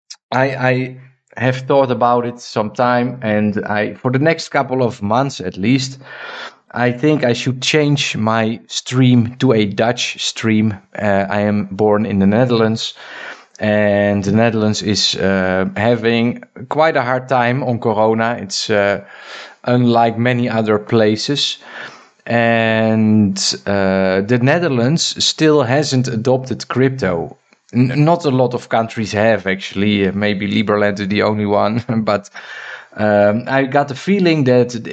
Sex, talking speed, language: male, 140 wpm, Dutch